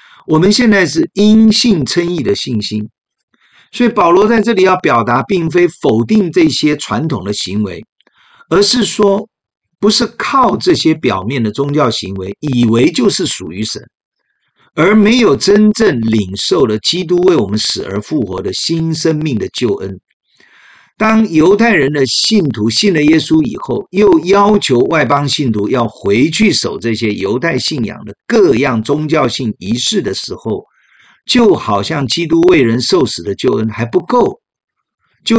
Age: 50-69